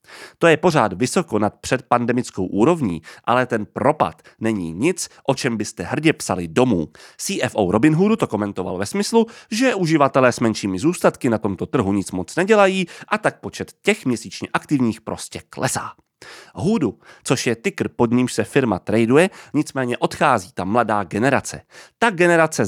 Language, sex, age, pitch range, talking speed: Czech, male, 30-49, 110-175 Hz, 160 wpm